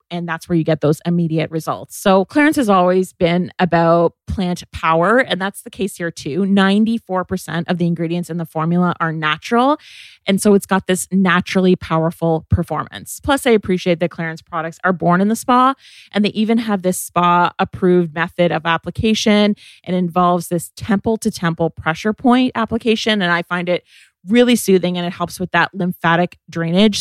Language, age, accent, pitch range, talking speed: English, 30-49, American, 170-220 Hz, 175 wpm